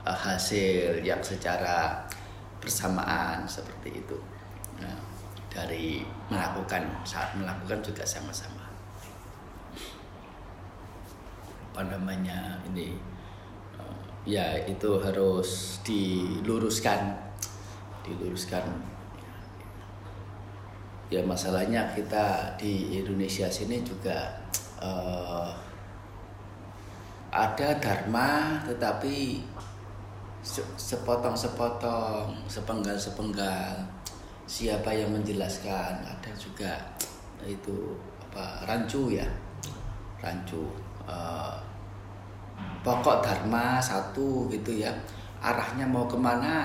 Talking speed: 70 wpm